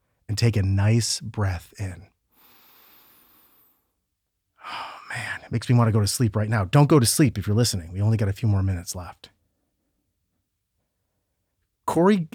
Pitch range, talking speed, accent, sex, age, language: 100-120 Hz, 165 wpm, American, male, 30-49, English